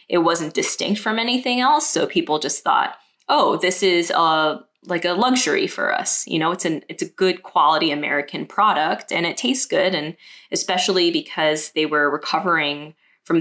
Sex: female